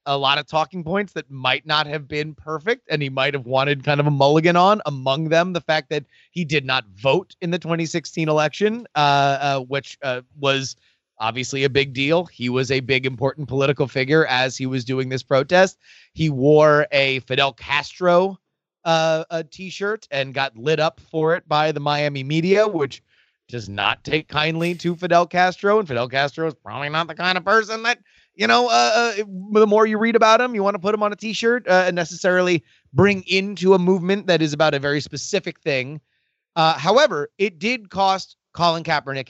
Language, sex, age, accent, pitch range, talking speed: English, male, 30-49, American, 135-175 Hz, 200 wpm